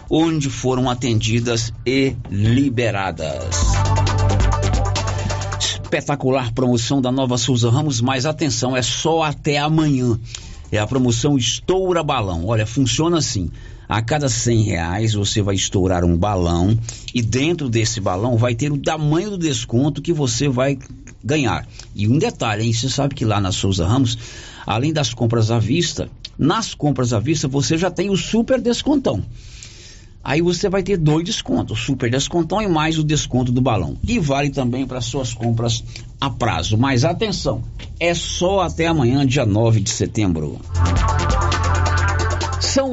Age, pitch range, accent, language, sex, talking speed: 50-69, 105-150 Hz, Brazilian, Portuguese, male, 150 wpm